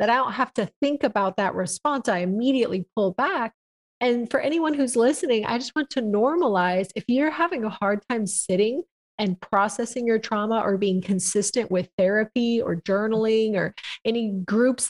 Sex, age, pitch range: female, 30-49, 200-250 Hz